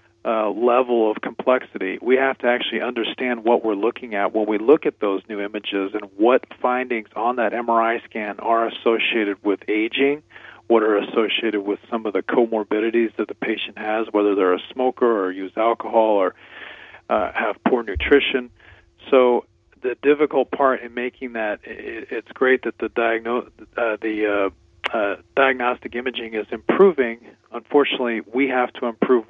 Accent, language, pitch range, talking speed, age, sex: American, English, 105-125 Hz, 160 wpm, 40-59, male